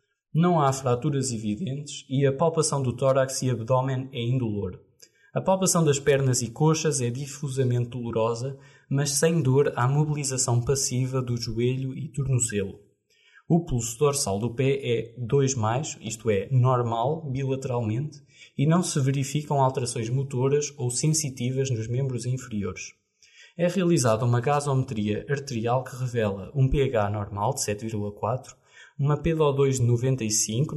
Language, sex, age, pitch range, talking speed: Portuguese, male, 20-39, 115-145 Hz, 135 wpm